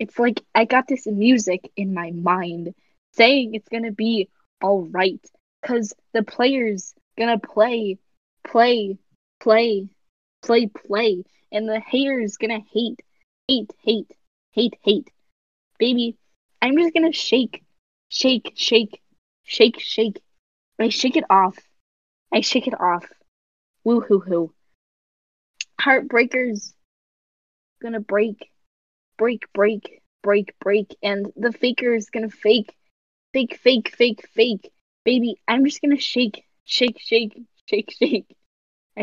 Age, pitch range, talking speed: 10-29, 205-245 Hz, 125 wpm